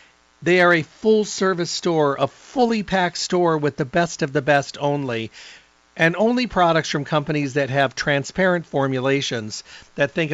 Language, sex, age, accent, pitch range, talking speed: English, male, 50-69, American, 135-170 Hz, 150 wpm